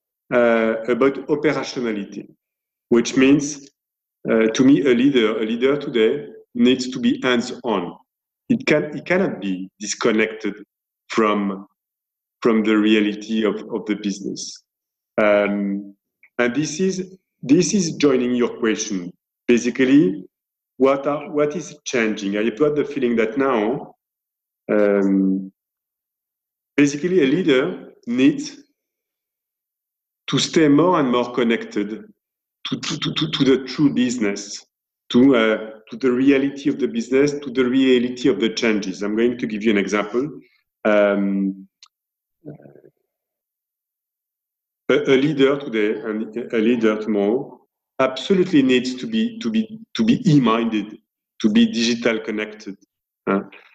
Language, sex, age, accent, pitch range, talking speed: English, male, 40-59, French, 110-145 Hz, 130 wpm